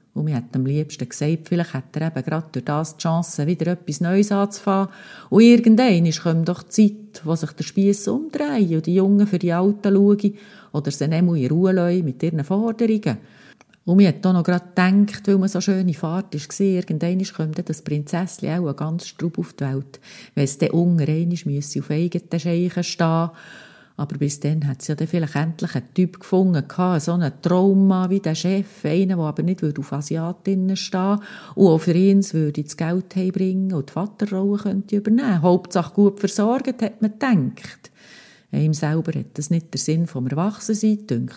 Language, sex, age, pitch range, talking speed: German, female, 40-59, 155-195 Hz, 195 wpm